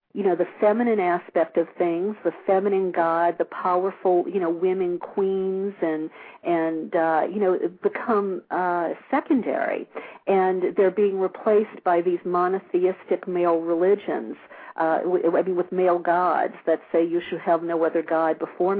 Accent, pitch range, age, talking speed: American, 175-215 Hz, 50-69, 155 wpm